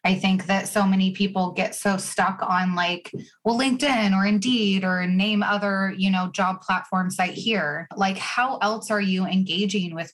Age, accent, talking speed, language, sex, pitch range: 20-39, American, 185 wpm, English, female, 175-200 Hz